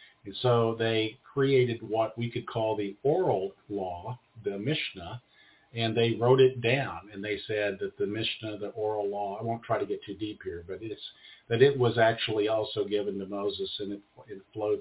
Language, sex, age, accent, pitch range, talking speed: English, male, 50-69, American, 105-130 Hz, 200 wpm